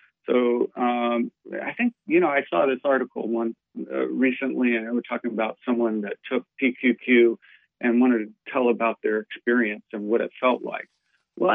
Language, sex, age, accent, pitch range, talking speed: English, male, 50-69, American, 120-150 Hz, 180 wpm